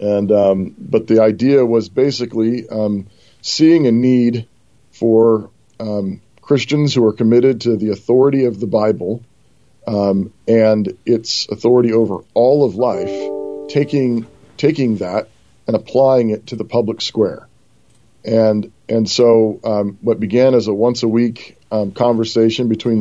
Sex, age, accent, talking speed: male, 40-59, American, 145 wpm